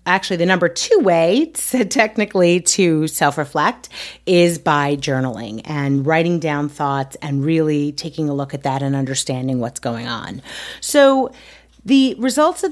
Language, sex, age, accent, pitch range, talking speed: English, female, 40-59, American, 160-220 Hz, 150 wpm